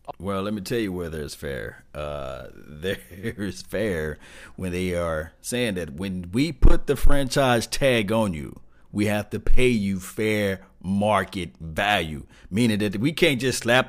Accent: American